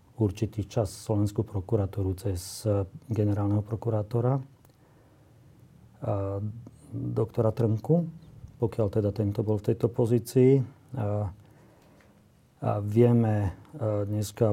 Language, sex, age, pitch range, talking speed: Slovak, male, 40-59, 100-110 Hz, 85 wpm